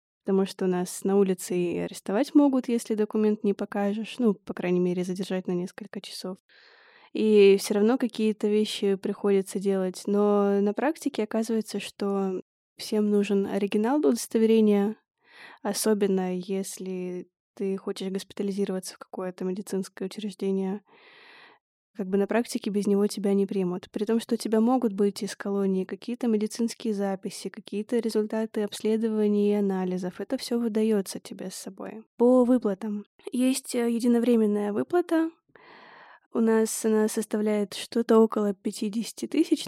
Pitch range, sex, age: 200-230 Hz, female, 20-39